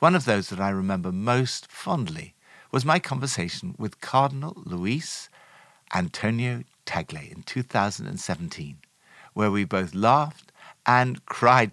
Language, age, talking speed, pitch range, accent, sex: English, 60-79, 125 wpm, 115-180 Hz, British, male